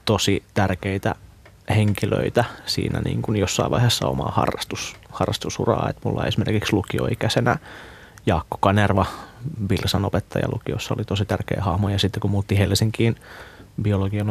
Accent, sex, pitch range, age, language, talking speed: native, male, 100-120 Hz, 30-49, Finnish, 130 wpm